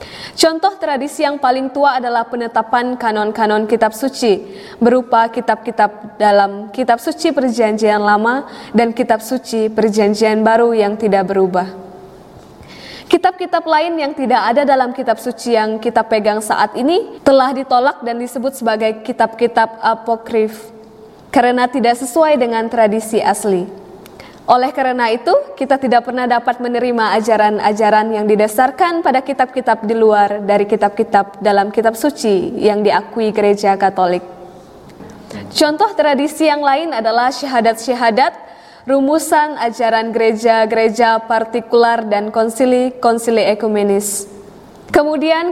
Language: Indonesian